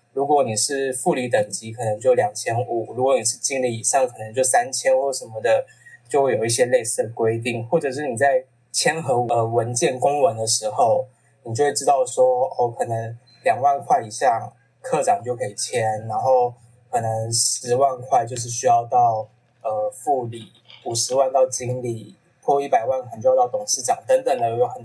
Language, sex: Chinese, male